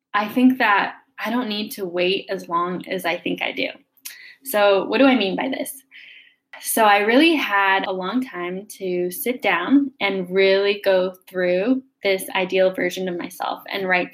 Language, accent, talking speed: English, American, 185 wpm